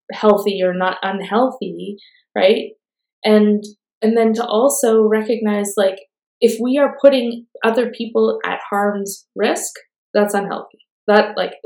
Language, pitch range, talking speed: English, 185-220 Hz, 130 wpm